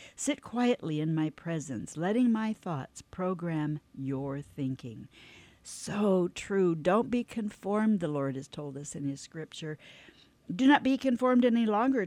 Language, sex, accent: English, female, American